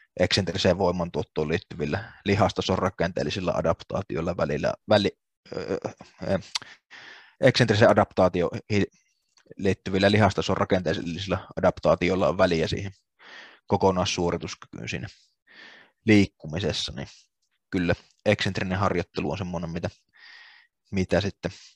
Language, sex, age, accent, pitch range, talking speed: Finnish, male, 20-39, native, 90-105 Hz, 75 wpm